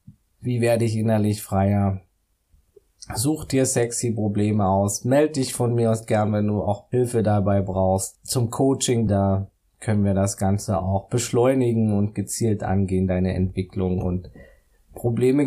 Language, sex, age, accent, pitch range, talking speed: German, male, 20-39, German, 100-115 Hz, 145 wpm